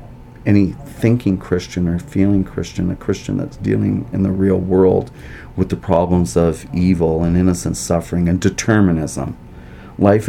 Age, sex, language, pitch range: 40-59, male, English, 85-100 Hz